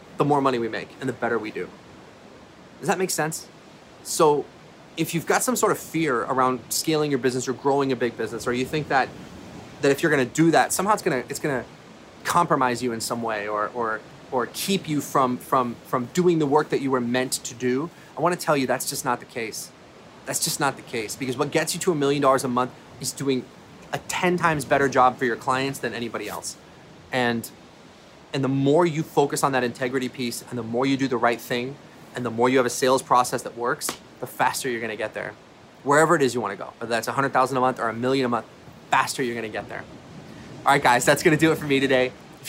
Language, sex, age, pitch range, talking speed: English, male, 30-49, 120-145 Hz, 240 wpm